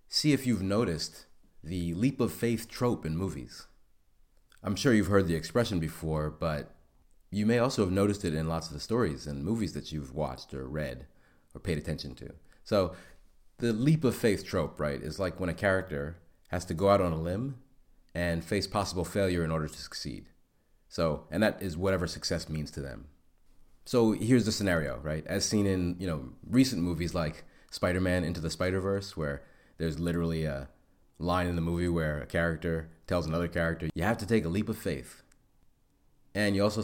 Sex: male